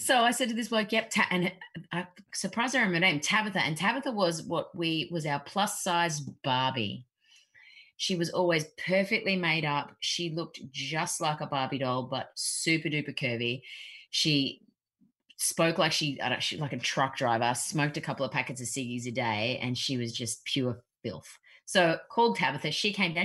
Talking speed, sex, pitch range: 185 wpm, female, 145-220 Hz